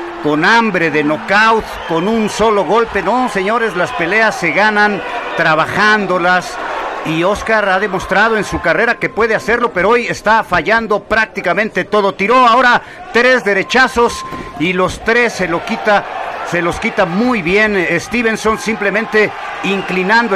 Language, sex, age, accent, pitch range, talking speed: Spanish, male, 50-69, Mexican, 175-220 Hz, 145 wpm